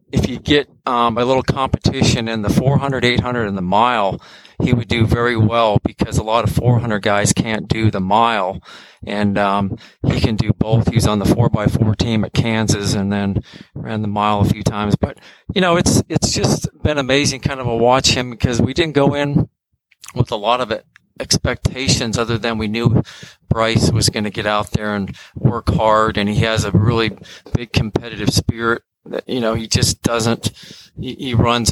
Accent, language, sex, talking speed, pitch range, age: American, English, male, 195 wpm, 105-120 Hz, 40-59